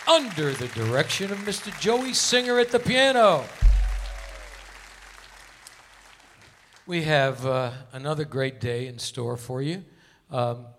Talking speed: 120 wpm